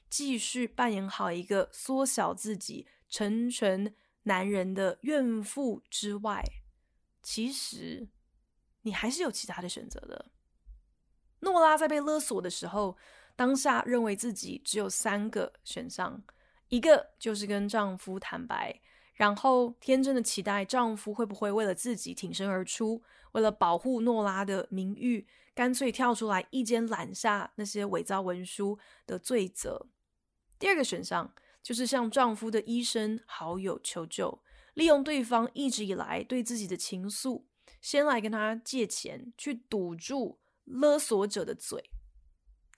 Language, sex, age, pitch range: Chinese, female, 20-39, 200-255 Hz